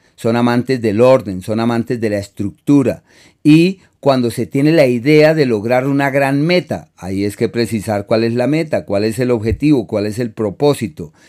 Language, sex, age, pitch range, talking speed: Spanish, male, 40-59, 105-135 Hz, 190 wpm